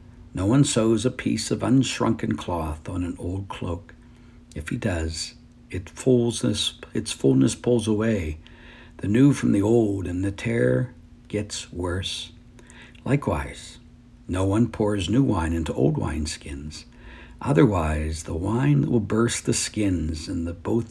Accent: American